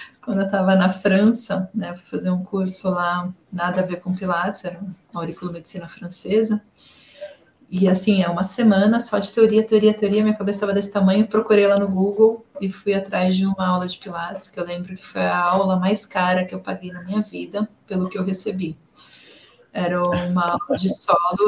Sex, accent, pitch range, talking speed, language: female, Brazilian, 185-215 Hz, 200 wpm, Portuguese